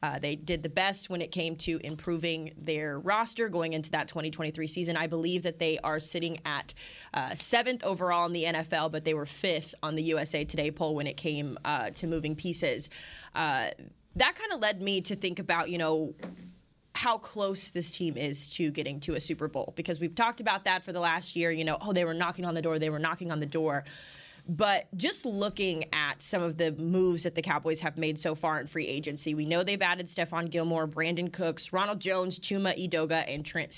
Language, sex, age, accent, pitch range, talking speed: English, female, 20-39, American, 155-185 Hz, 220 wpm